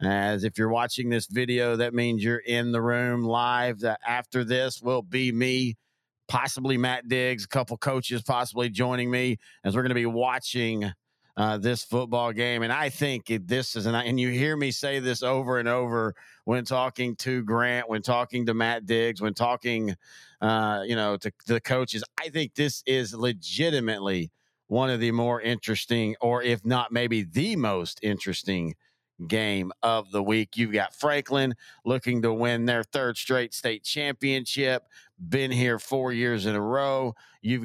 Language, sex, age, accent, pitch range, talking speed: English, male, 40-59, American, 115-130 Hz, 175 wpm